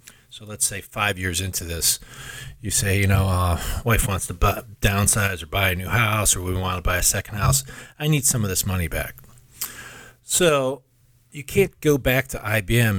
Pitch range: 95-125 Hz